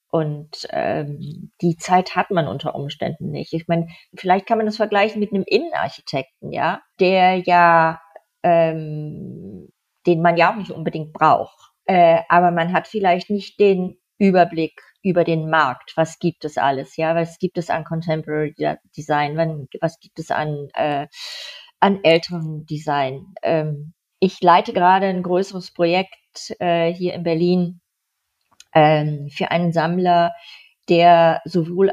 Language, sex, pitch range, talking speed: German, female, 165-190 Hz, 145 wpm